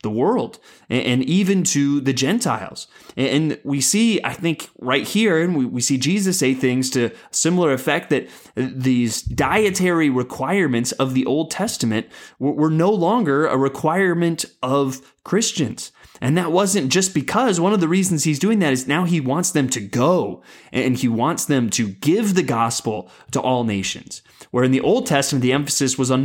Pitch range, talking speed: 125-175 Hz, 175 wpm